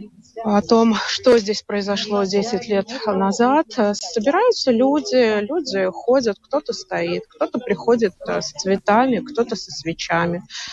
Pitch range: 195-250 Hz